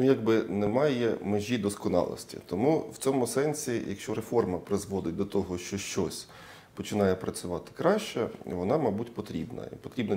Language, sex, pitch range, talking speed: Ukrainian, male, 95-125 Hz, 140 wpm